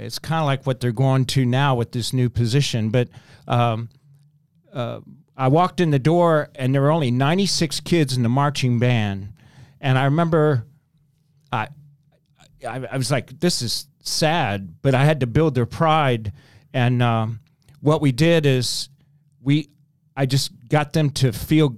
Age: 40-59